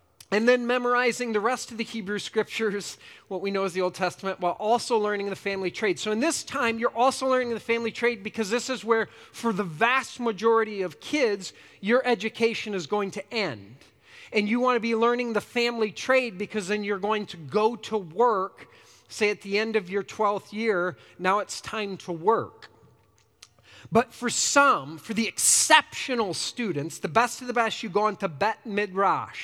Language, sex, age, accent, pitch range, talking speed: English, male, 40-59, American, 195-245 Hz, 195 wpm